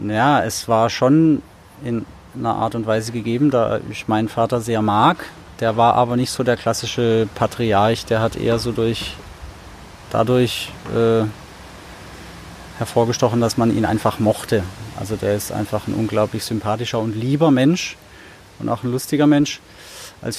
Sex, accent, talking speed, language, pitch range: male, German, 155 wpm, German, 105-125 Hz